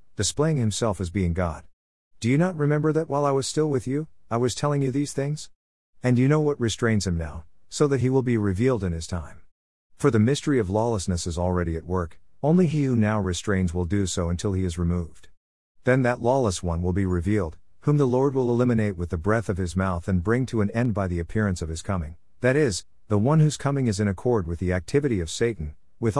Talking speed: 235 wpm